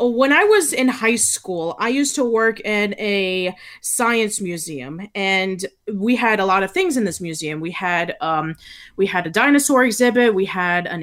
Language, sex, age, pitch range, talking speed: English, female, 20-39, 185-245 Hz, 190 wpm